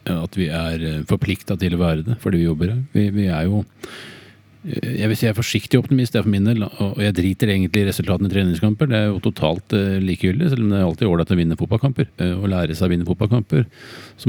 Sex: male